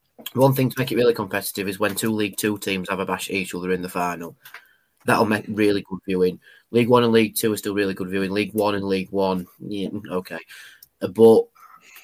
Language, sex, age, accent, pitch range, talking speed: English, male, 20-39, British, 100-120 Hz, 220 wpm